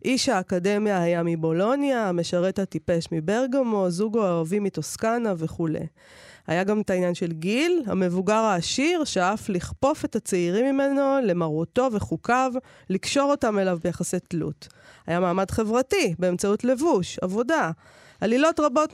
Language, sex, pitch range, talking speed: Hebrew, female, 180-255 Hz, 125 wpm